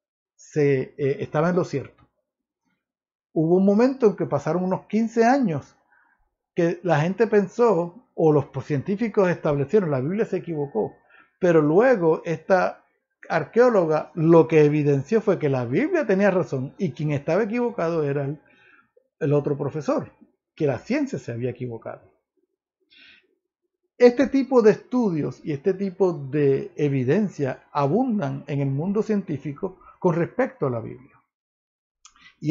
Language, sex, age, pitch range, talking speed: Spanish, male, 60-79, 145-215 Hz, 135 wpm